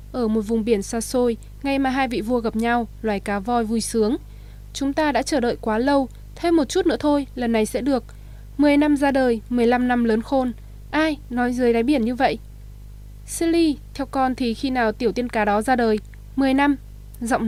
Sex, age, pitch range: female, 20-39, 230-285 Hz